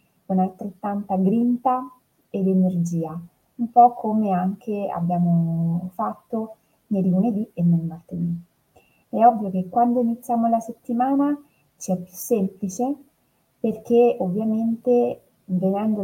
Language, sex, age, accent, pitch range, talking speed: Italian, female, 20-39, native, 185-235 Hz, 110 wpm